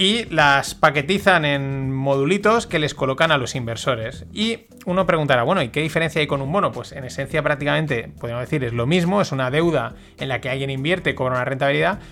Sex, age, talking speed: male, 30-49, 210 wpm